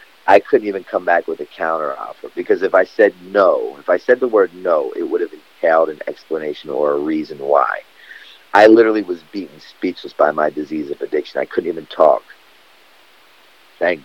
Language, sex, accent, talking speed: English, male, American, 190 wpm